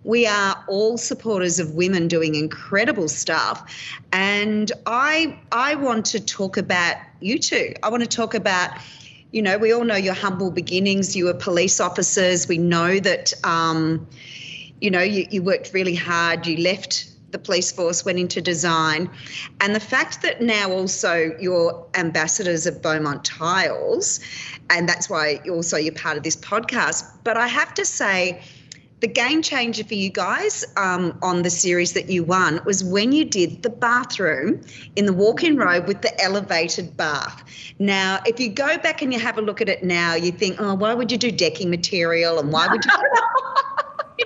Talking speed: 180 wpm